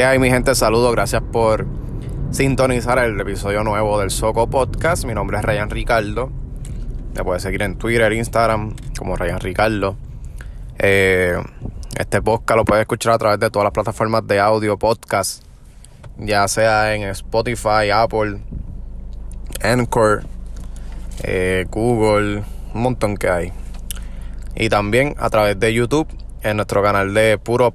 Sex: male